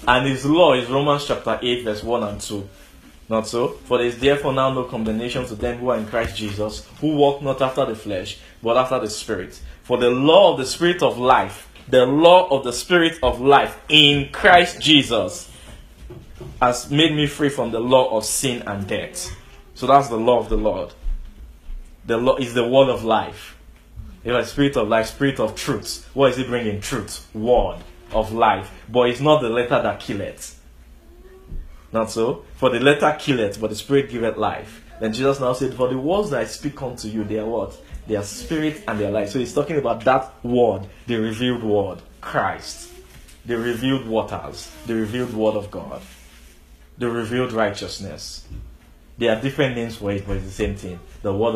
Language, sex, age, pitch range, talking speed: English, male, 20-39, 105-130 Hz, 200 wpm